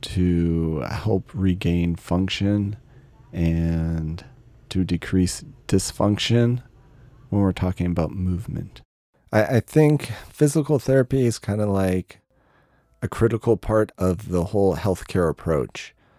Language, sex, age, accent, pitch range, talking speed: English, male, 40-59, American, 80-100 Hz, 110 wpm